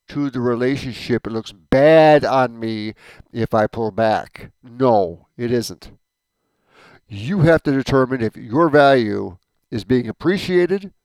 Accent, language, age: American, English, 50-69